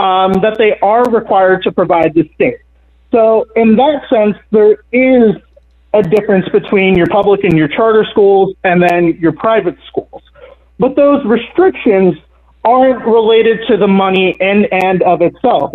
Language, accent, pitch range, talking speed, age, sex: English, American, 180-230 Hz, 155 wpm, 30-49, male